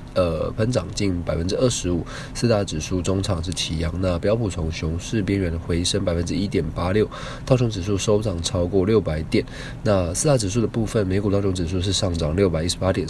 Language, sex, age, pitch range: Chinese, male, 20-39, 90-110 Hz